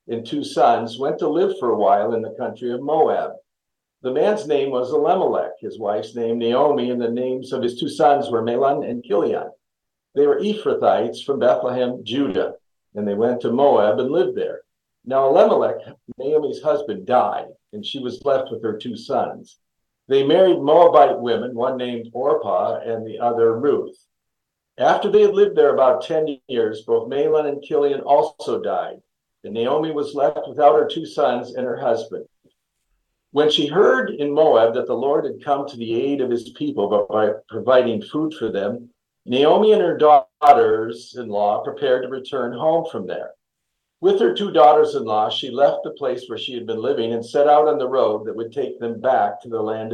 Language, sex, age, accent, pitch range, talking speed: English, male, 60-79, American, 120-185 Hz, 190 wpm